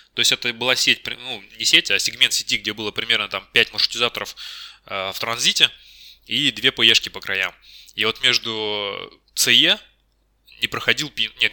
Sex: male